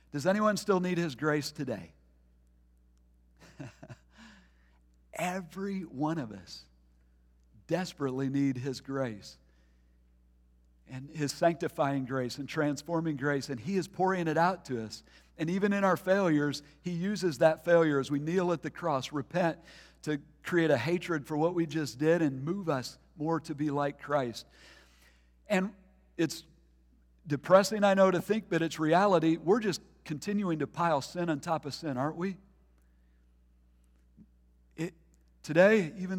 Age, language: 50-69, English